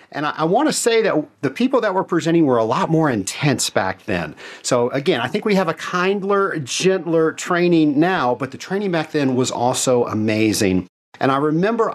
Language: English